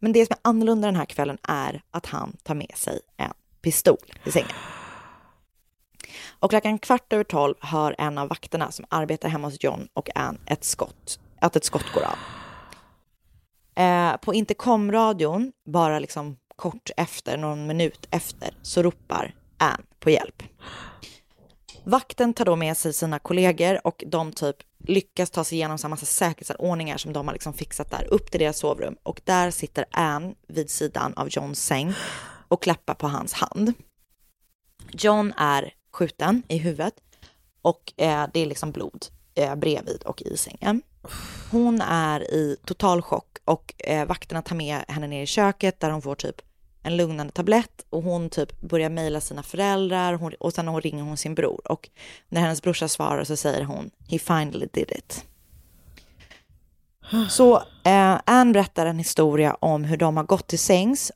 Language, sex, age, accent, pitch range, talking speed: Swedish, female, 20-39, native, 150-190 Hz, 170 wpm